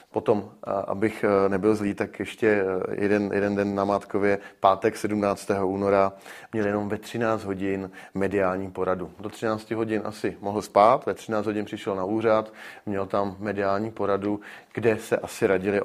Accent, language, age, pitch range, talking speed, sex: native, Czech, 30-49, 100-120 Hz, 155 wpm, male